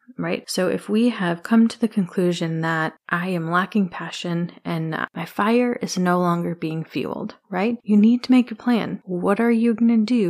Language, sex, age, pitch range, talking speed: English, female, 30-49, 175-225 Hz, 205 wpm